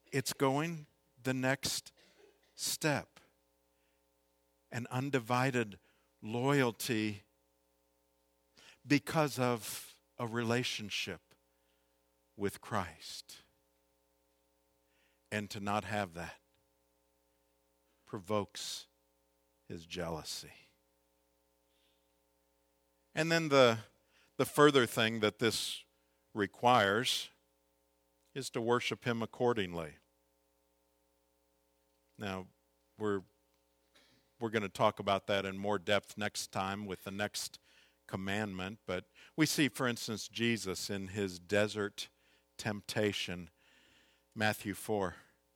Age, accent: 50-69, American